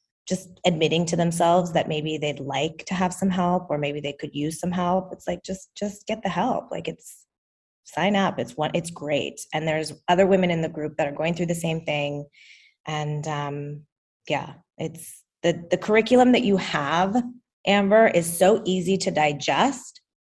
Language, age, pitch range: English, 20-39, 150-195 Hz